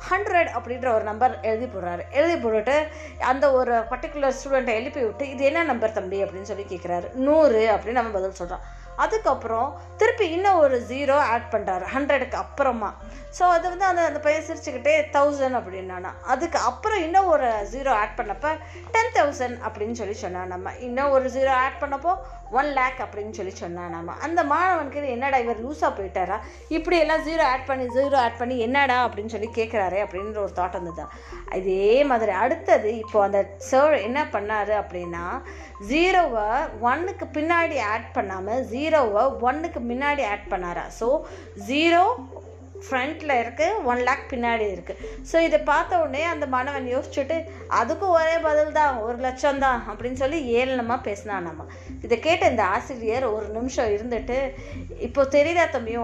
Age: 20-39